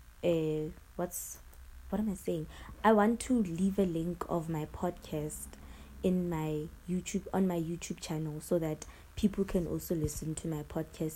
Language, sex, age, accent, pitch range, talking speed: English, female, 20-39, South African, 150-185 Hz, 165 wpm